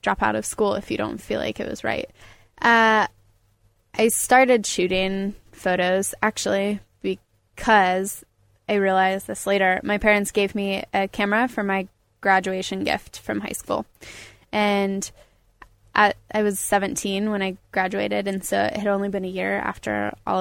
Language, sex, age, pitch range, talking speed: English, female, 10-29, 185-205 Hz, 160 wpm